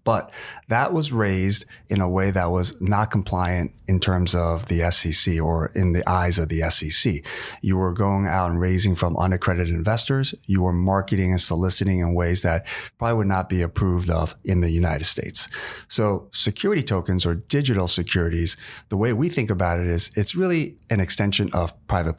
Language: English